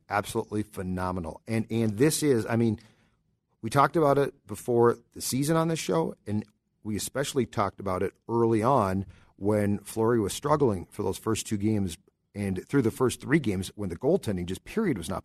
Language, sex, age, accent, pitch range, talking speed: English, male, 40-59, American, 105-130 Hz, 190 wpm